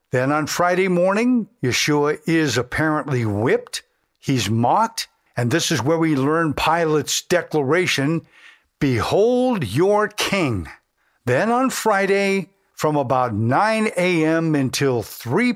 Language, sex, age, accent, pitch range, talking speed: English, male, 50-69, American, 135-190 Hz, 115 wpm